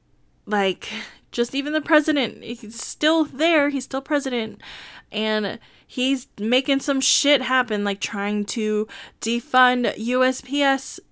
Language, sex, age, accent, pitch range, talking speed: English, female, 20-39, American, 190-275 Hz, 120 wpm